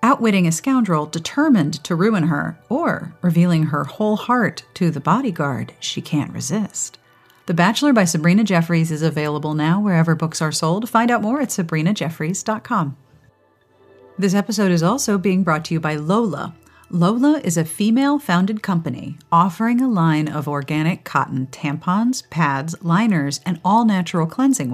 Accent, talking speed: American, 150 wpm